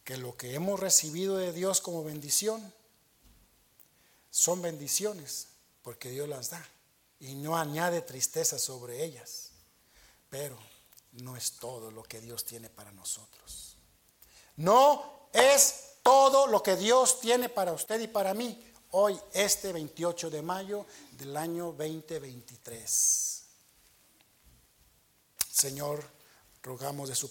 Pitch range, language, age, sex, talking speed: 130-160 Hz, Spanish, 50-69, male, 120 wpm